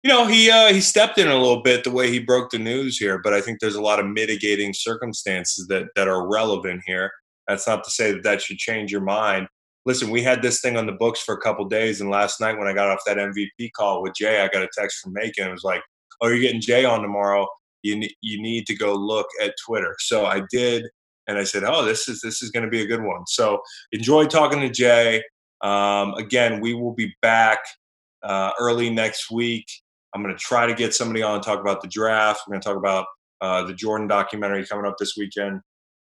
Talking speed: 245 wpm